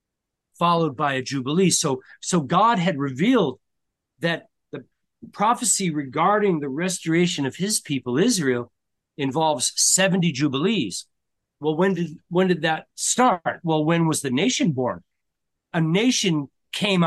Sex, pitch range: male, 130-180 Hz